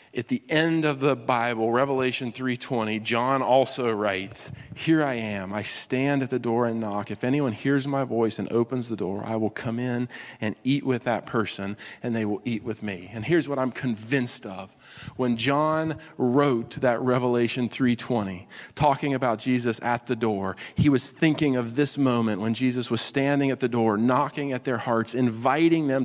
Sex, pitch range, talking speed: male, 125-155 Hz, 190 wpm